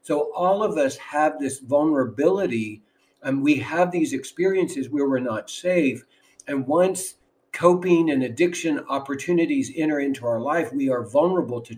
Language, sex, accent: English, male, American